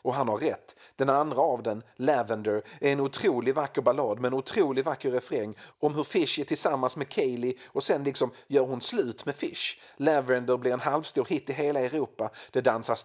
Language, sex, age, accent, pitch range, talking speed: Swedish, male, 40-59, native, 115-150 Hz, 200 wpm